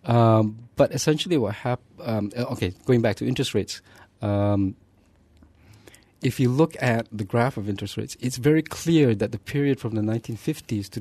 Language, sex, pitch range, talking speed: English, male, 100-130 Hz, 165 wpm